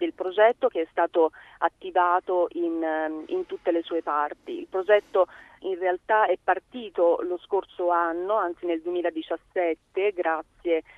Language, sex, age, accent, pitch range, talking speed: Italian, female, 30-49, native, 165-205 Hz, 135 wpm